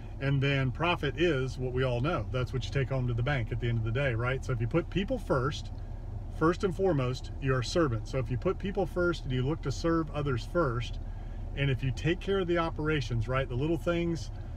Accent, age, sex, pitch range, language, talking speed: American, 40-59, male, 115-155 Hz, English, 245 wpm